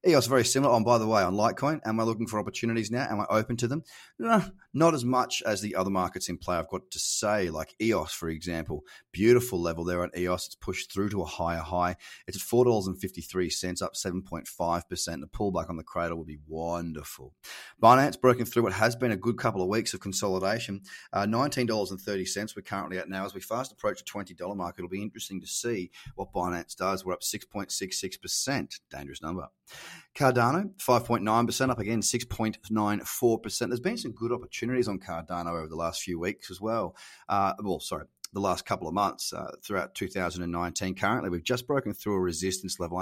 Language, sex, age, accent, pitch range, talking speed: English, male, 30-49, Australian, 90-120 Hz, 195 wpm